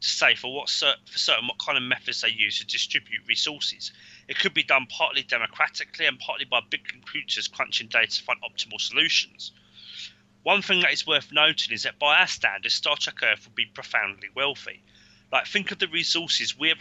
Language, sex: English, male